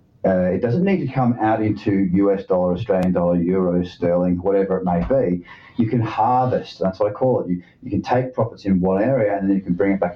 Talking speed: 240 wpm